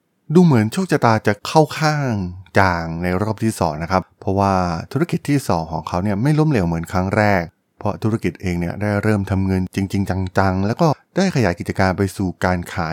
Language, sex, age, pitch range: Thai, male, 20-39, 90-120 Hz